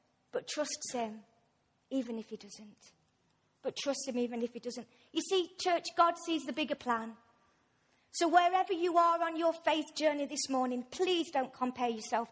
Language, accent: English, British